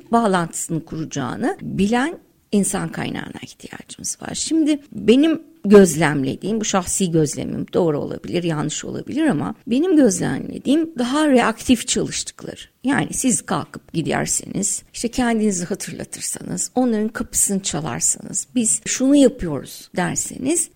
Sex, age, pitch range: female, 60-79, 195-255 Hz